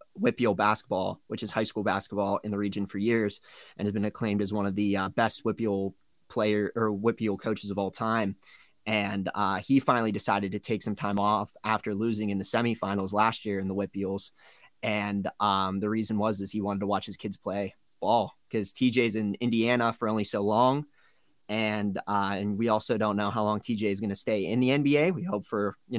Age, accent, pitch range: 20-39, American, 100-120 Hz